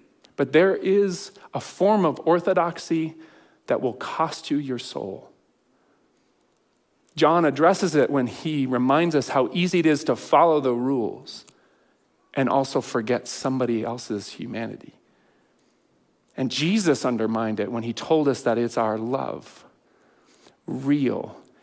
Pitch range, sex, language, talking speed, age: 130-180 Hz, male, English, 130 wpm, 40-59